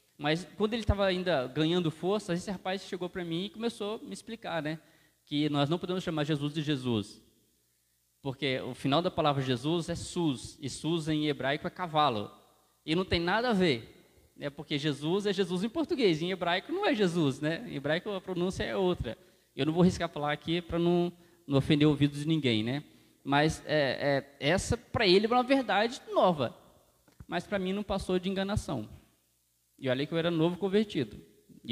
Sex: male